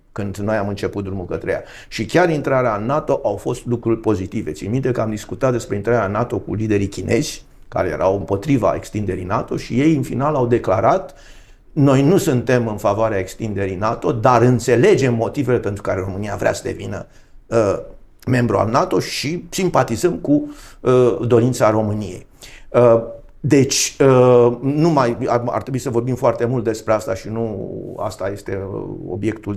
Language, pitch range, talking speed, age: Romanian, 105-130 Hz, 170 wpm, 50-69